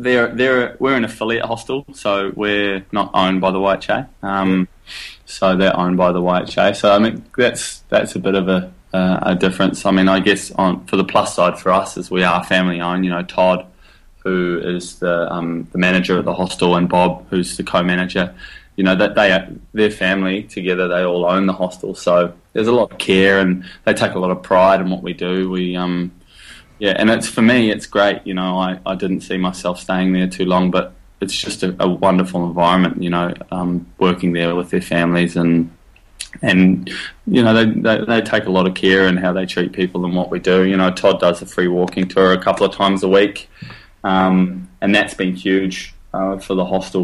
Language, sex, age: English, male, 20-39